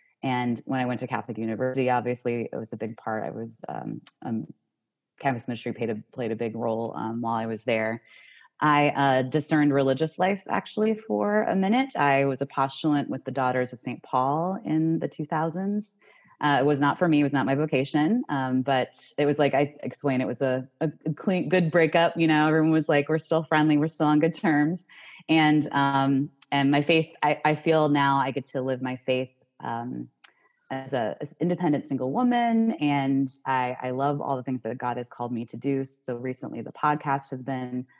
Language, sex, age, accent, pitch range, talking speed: English, female, 20-39, American, 125-150 Hz, 205 wpm